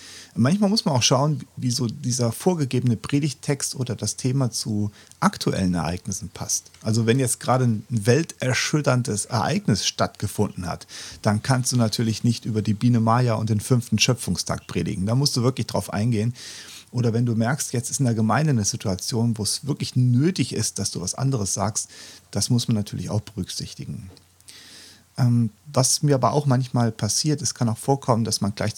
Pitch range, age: 105-125 Hz, 40-59